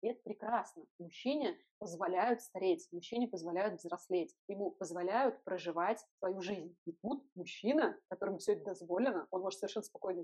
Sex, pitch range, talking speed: female, 190-230 Hz, 145 wpm